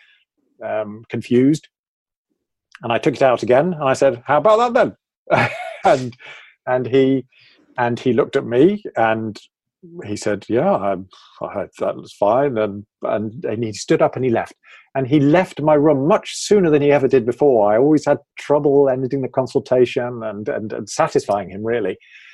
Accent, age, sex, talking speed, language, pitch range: British, 40-59, male, 175 wpm, English, 115-145 Hz